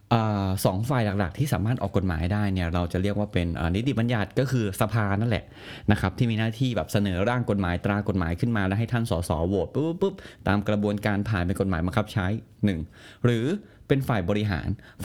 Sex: male